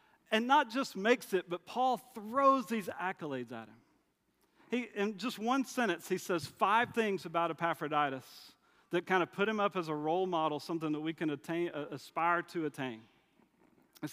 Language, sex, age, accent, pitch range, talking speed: English, male, 40-59, American, 140-190 Hz, 180 wpm